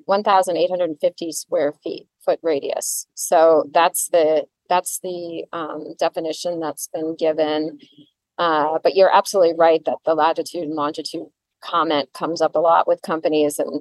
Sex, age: female, 30-49